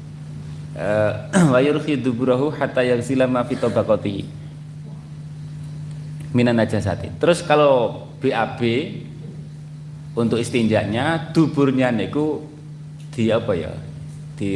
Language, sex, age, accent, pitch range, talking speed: Indonesian, male, 30-49, native, 120-150 Hz, 65 wpm